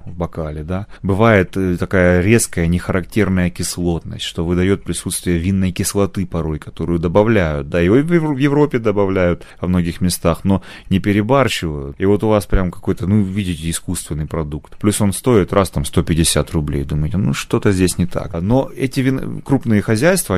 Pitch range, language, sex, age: 85-120 Hz, Russian, male, 30-49